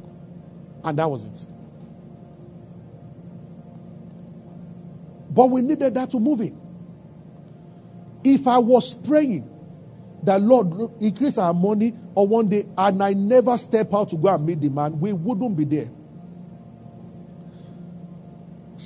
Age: 50-69